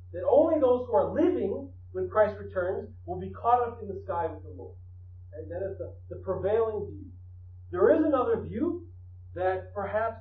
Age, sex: 40-59, male